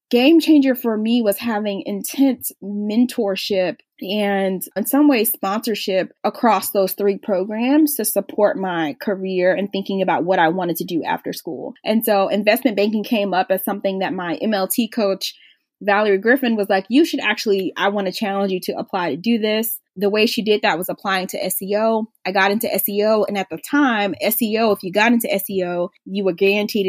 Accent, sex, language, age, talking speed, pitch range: American, female, English, 20-39, 190 wpm, 195-235 Hz